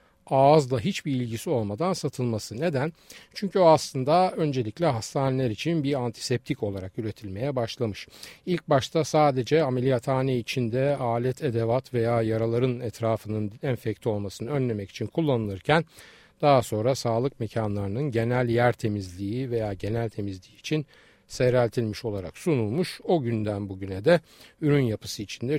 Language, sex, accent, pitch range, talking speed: Turkish, male, native, 110-150 Hz, 125 wpm